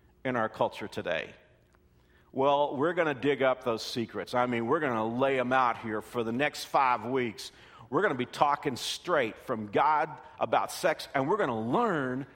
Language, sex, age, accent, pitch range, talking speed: English, male, 50-69, American, 125-185 Hz, 200 wpm